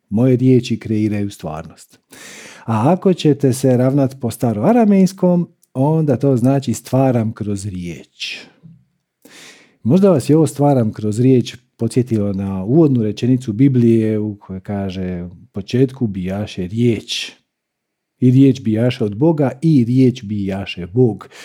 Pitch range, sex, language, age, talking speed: 105-140 Hz, male, Croatian, 50-69, 125 wpm